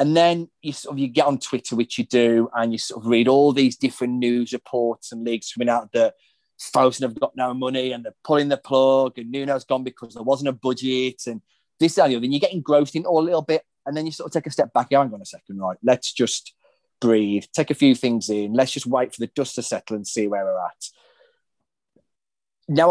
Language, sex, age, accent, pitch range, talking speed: English, male, 30-49, British, 115-145 Hz, 255 wpm